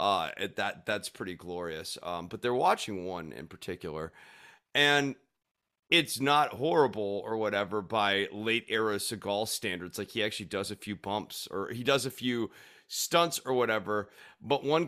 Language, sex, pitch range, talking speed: English, male, 100-125 Hz, 155 wpm